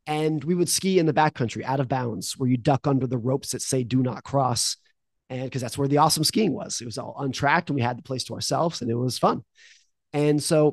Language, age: English, 30-49